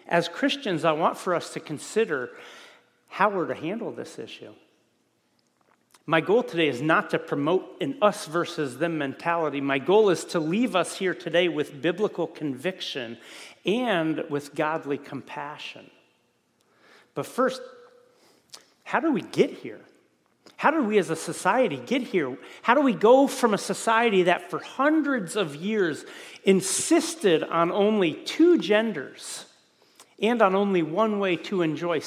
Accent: American